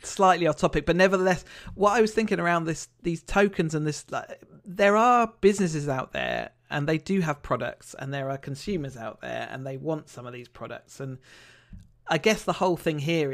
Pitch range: 135-165 Hz